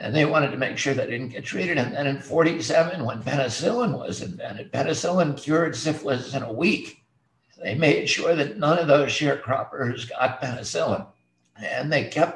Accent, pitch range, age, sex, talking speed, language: American, 120-155 Hz, 60-79, male, 180 wpm, English